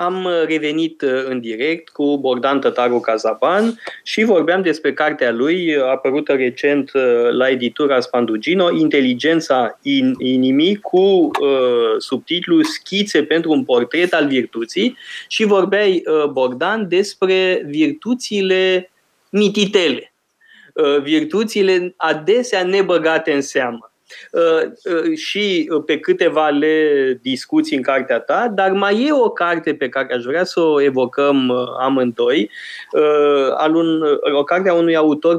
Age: 20-39